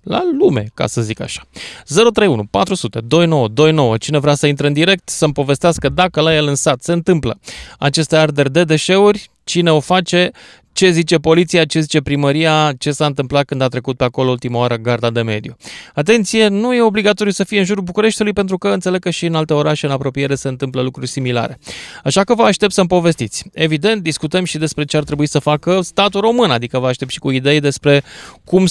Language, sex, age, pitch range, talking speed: Romanian, male, 20-39, 145-190 Hz, 205 wpm